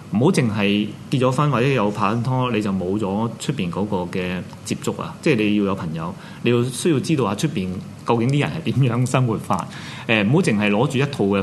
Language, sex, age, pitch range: Chinese, male, 30-49, 100-130 Hz